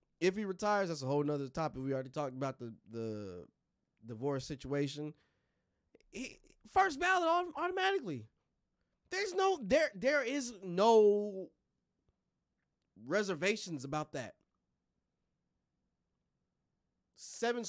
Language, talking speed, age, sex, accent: English, 100 wpm, 20-39, male, American